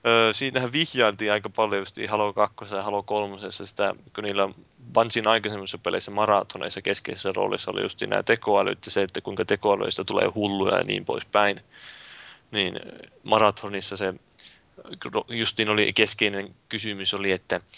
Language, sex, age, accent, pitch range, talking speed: Finnish, male, 20-39, native, 100-115 Hz, 135 wpm